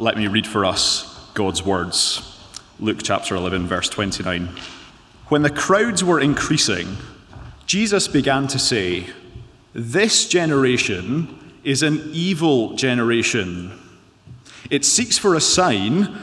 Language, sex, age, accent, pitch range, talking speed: English, male, 30-49, British, 110-160 Hz, 120 wpm